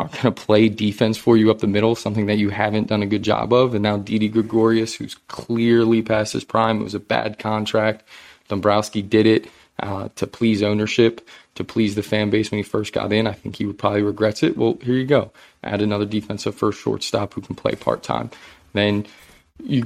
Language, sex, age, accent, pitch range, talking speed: English, male, 20-39, American, 105-120 Hz, 220 wpm